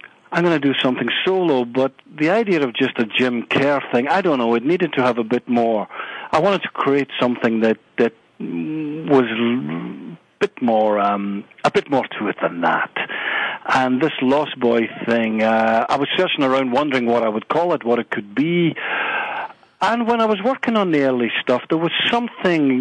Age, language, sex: 50-69, English, male